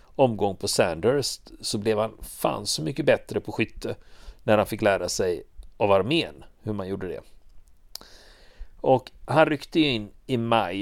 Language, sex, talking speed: Swedish, male, 160 wpm